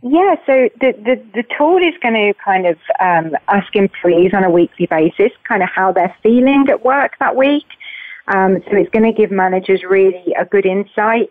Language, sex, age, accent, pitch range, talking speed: English, female, 30-49, British, 180-225 Hz, 200 wpm